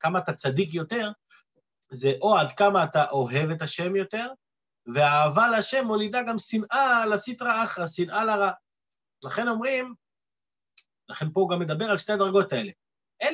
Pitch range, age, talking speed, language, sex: 160-210 Hz, 30-49, 150 wpm, Hebrew, male